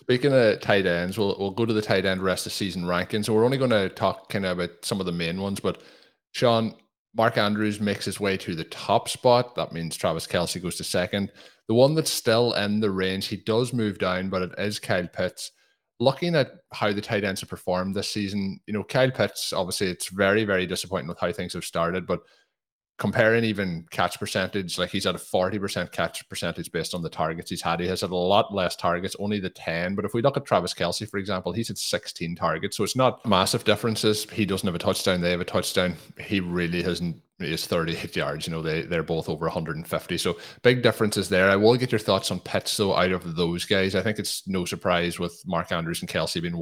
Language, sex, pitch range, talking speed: English, male, 90-110 Hz, 235 wpm